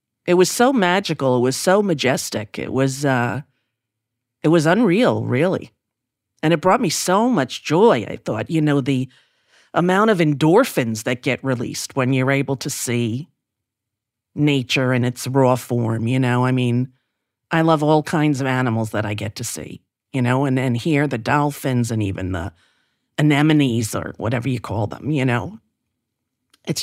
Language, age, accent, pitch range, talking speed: English, 40-59, American, 120-160 Hz, 170 wpm